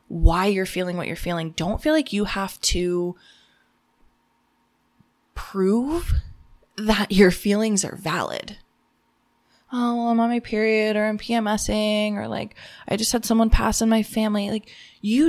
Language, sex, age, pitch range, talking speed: English, female, 20-39, 175-215 Hz, 150 wpm